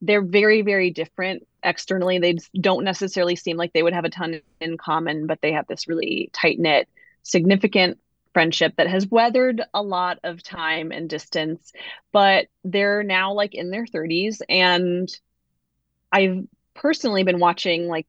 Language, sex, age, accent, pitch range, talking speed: English, female, 20-39, American, 175-215 Hz, 160 wpm